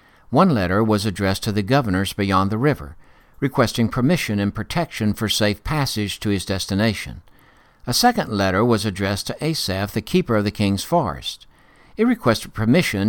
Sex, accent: male, American